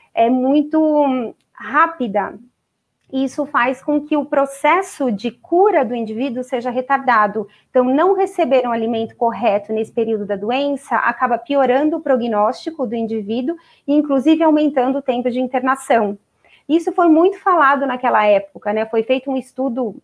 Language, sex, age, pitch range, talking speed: Portuguese, female, 30-49, 230-290 Hz, 145 wpm